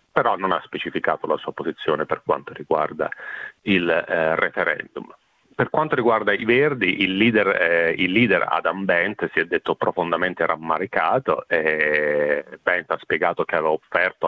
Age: 40-59